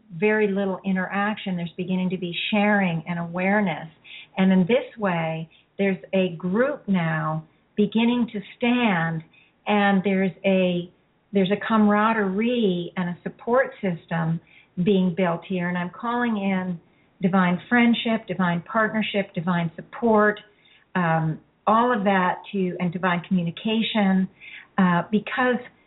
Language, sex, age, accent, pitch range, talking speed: English, female, 50-69, American, 185-215 Hz, 125 wpm